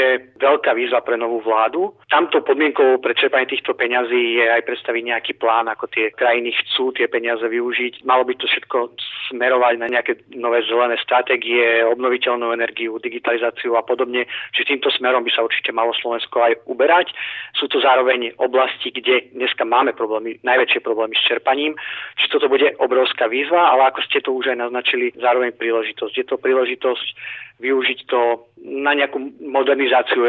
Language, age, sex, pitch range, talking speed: Slovak, 30-49, male, 115-130 Hz, 160 wpm